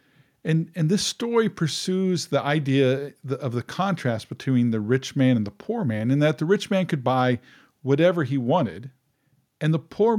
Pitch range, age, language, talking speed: 125-160 Hz, 50-69, English, 185 wpm